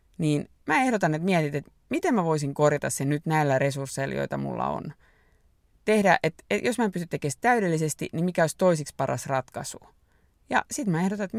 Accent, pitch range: native, 135-190 Hz